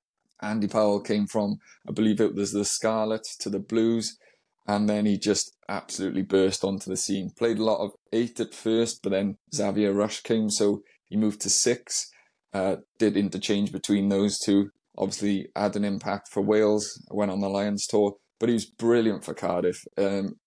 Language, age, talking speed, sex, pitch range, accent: English, 20-39, 185 wpm, male, 100-110 Hz, British